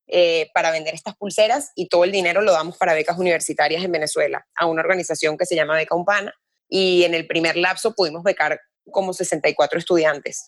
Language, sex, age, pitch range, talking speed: English, female, 20-39, 165-195 Hz, 195 wpm